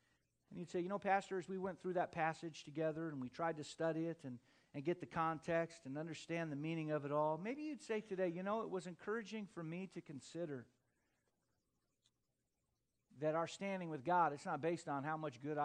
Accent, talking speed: American, 210 wpm